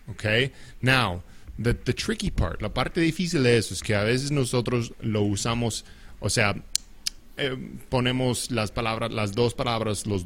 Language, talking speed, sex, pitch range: English, 165 wpm, male, 100-120 Hz